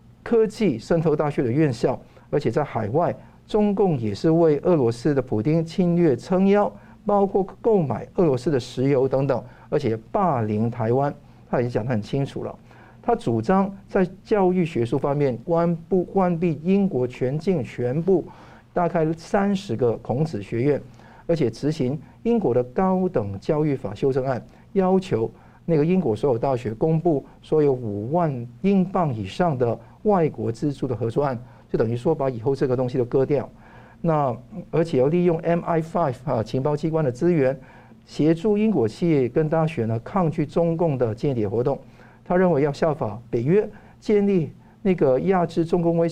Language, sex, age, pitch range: Chinese, male, 50-69, 125-175 Hz